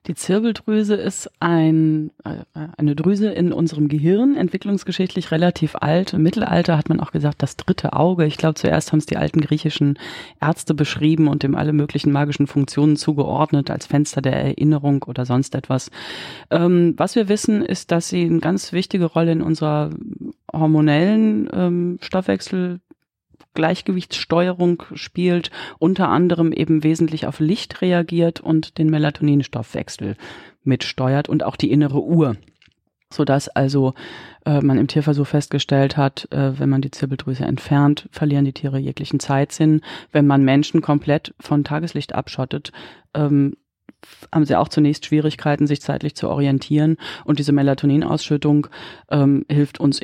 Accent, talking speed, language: German, 145 wpm, German